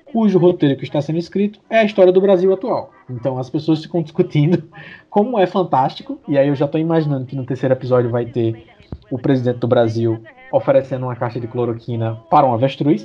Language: Portuguese